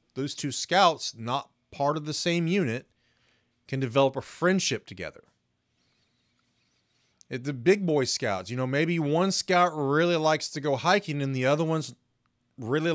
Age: 30-49